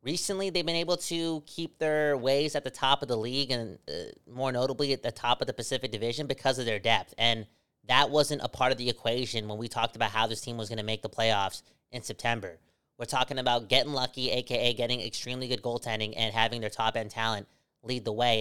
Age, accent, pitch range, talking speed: 30-49, American, 115-145 Hz, 230 wpm